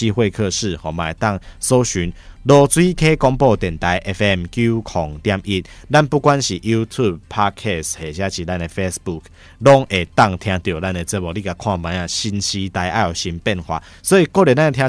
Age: 20-39